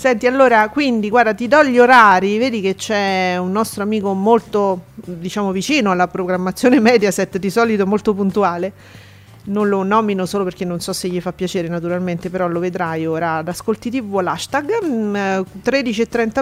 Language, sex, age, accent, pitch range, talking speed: Italian, female, 40-59, native, 190-240 Hz, 165 wpm